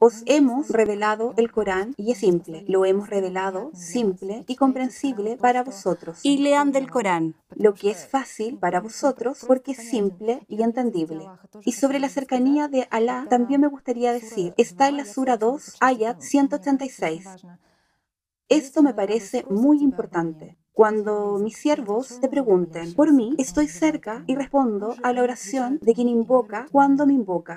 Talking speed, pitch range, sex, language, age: 160 wpm, 205-270 Hz, female, Spanish, 30-49